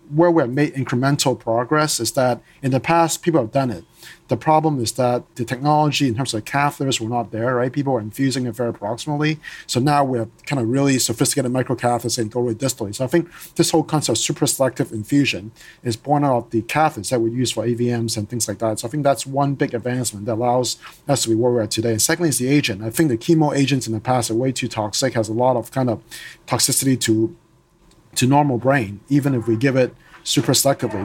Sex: male